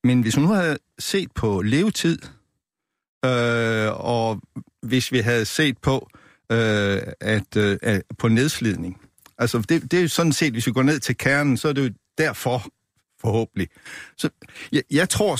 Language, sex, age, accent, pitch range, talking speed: Danish, male, 60-79, native, 110-140 Hz, 170 wpm